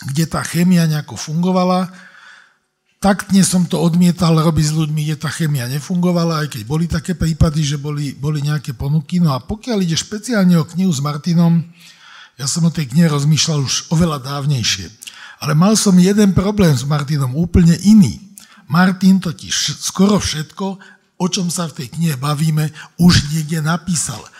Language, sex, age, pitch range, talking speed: Slovak, male, 60-79, 150-185 Hz, 165 wpm